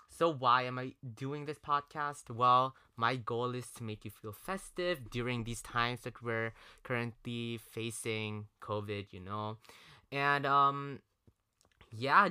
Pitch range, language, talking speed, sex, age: 110-140 Hz, English, 140 wpm, male, 20-39